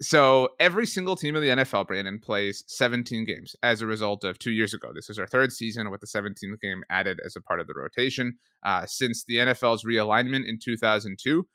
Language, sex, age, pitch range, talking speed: English, male, 30-49, 110-135 Hz, 215 wpm